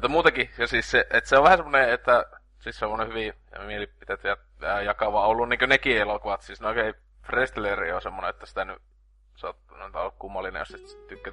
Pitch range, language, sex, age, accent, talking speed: 105-125 Hz, Finnish, male, 20-39, native, 210 wpm